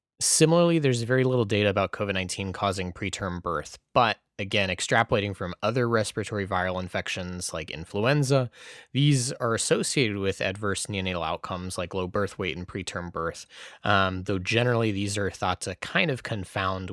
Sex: male